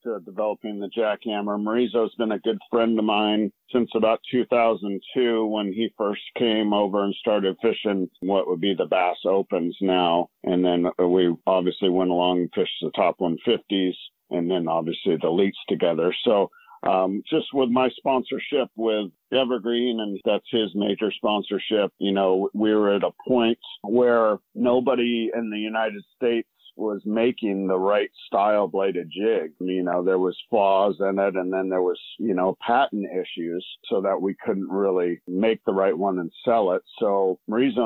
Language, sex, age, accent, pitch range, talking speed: English, male, 50-69, American, 95-110 Hz, 175 wpm